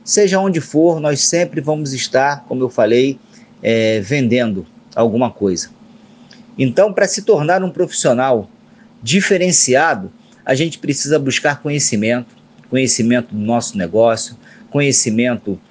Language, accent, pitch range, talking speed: Portuguese, Brazilian, 115-155 Hz, 115 wpm